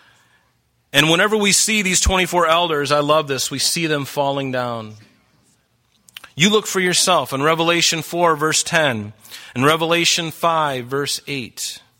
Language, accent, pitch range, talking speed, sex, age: English, American, 120-155 Hz, 145 wpm, male, 30-49